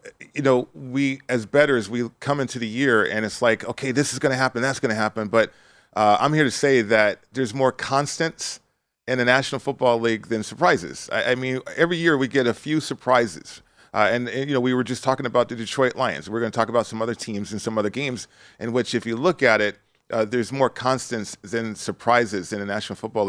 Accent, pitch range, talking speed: American, 110-135 Hz, 240 wpm